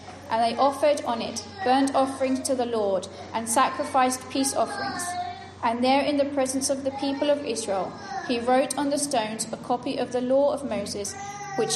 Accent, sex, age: British, female, 30-49